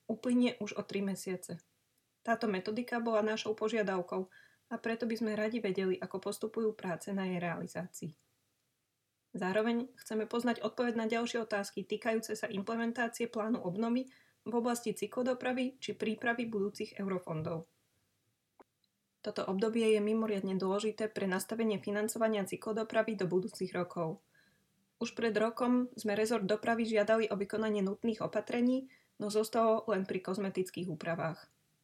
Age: 20-39